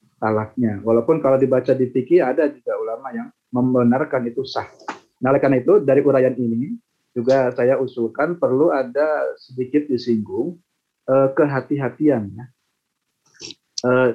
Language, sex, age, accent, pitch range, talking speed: Indonesian, male, 30-49, native, 115-140 Hz, 115 wpm